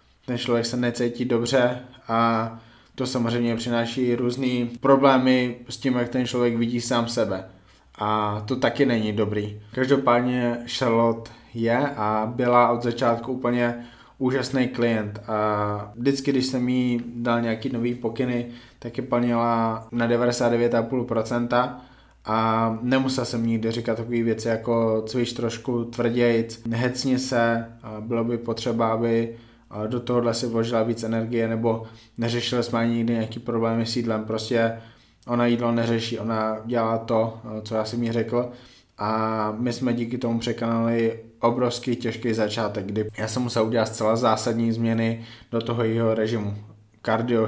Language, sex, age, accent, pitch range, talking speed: Czech, male, 20-39, native, 115-120 Hz, 145 wpm